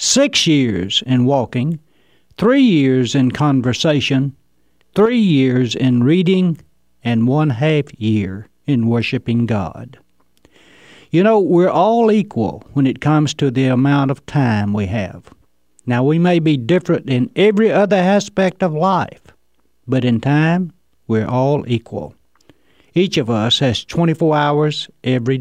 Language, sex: English, male